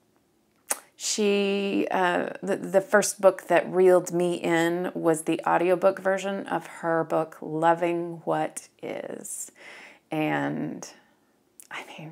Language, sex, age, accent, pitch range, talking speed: English, female, 30-49, American, 155-190 Hz, 115 wpm